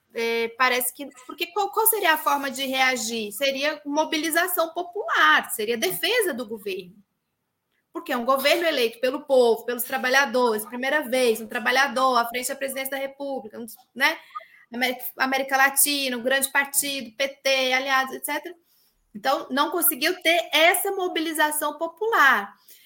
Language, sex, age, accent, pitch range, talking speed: Portuguese, female, 20-39, Brazilian, 240-320 Hz, 140 wpm